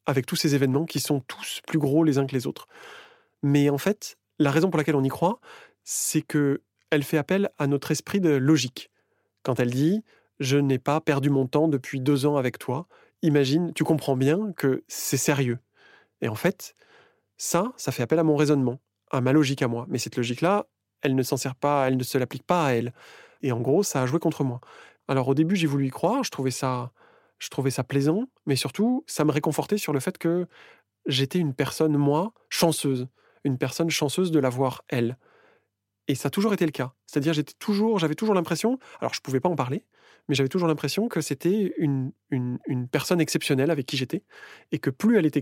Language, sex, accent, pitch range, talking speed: French, male, French, 135-165 Hz, 220 wpm